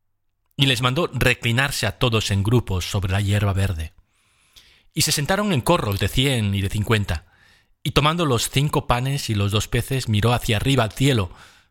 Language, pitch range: Spanish, 95-125 Hz